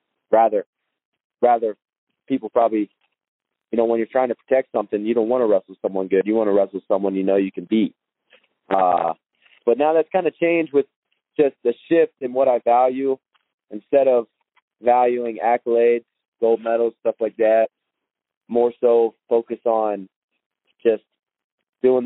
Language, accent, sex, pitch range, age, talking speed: English, American, male, 110-125 Hz, 20-39, 160 wpm